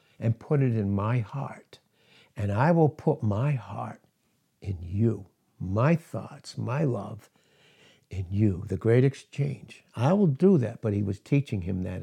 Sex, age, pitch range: male, 60-79, 105-145 Hz